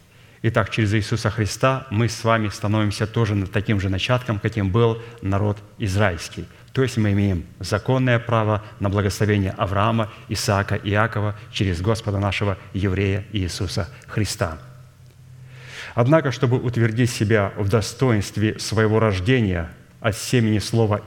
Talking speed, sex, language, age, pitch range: 125 wpm, male, Russian, 30-49, 100-120 Hz